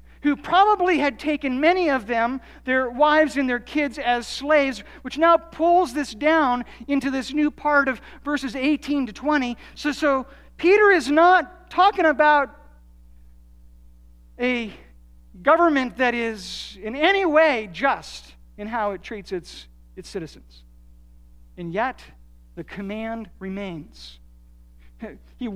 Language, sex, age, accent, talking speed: English, male, 50-69, American, 130 wpm